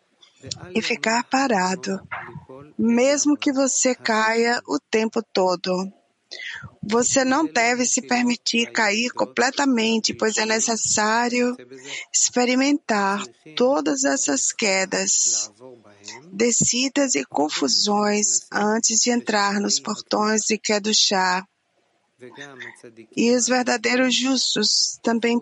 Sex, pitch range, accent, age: female, 195-245 Hz, Brazilian, 20-39